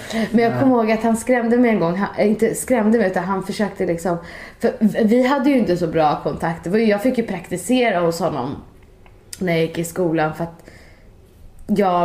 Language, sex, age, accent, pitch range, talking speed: Swedish, female, 20-39, native, 160-220 Hz, 205 wpm